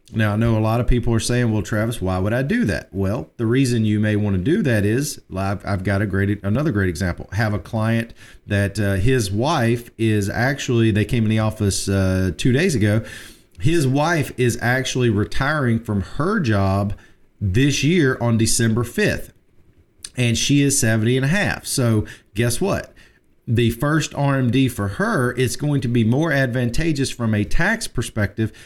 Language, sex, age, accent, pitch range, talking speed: English, male, 40-59, American, 105-130 Hz, 190 wpm